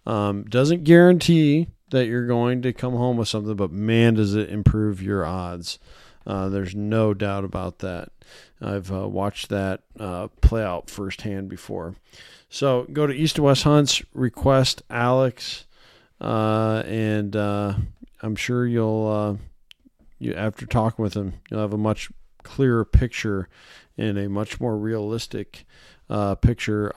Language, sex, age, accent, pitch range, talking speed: English, male, 40-59, American, 100-120 Hz, 150 wpm